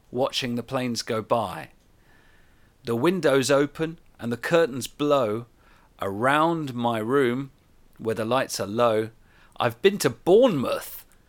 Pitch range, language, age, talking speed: 110-140 Hz, English, 40-59, 130 wpm